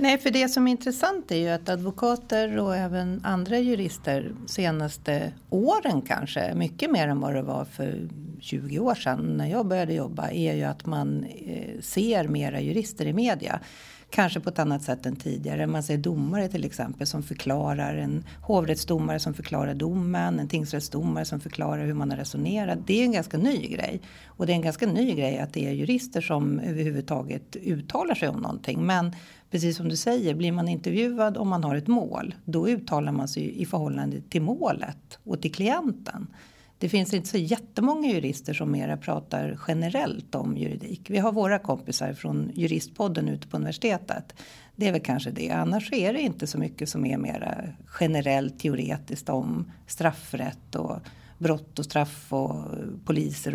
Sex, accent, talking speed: female, native, 180 wpm